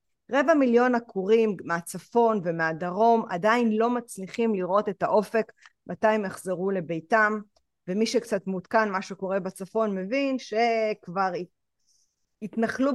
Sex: female